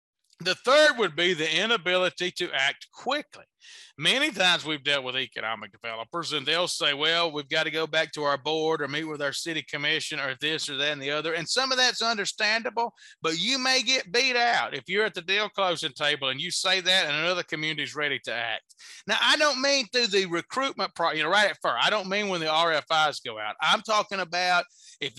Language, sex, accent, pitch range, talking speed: English, male, American, 150-210 Hz, 220 wpm